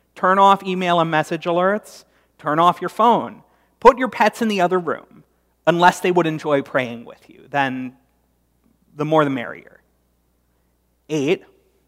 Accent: American